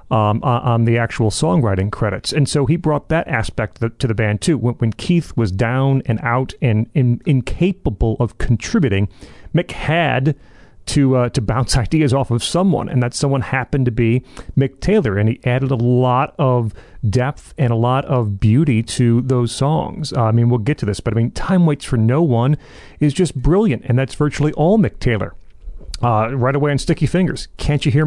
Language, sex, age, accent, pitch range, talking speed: English, male, 40-59, American, 120-150 Hz, 205 wpm